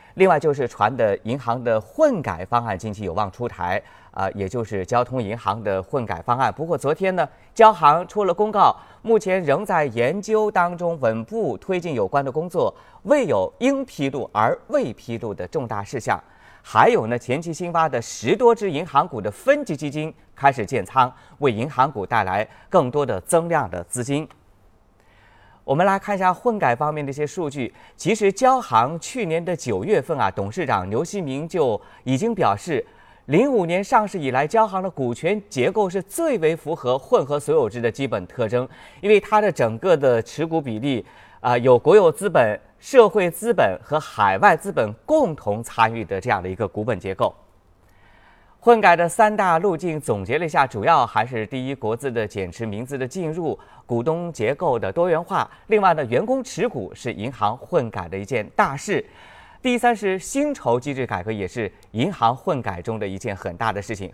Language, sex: Chinese, male